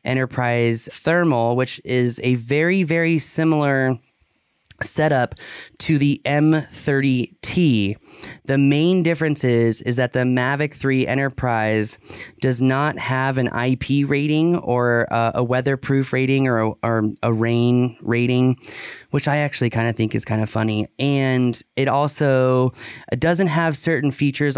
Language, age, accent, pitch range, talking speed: English, 20-39, American, 115-150 Hz, 135 wpm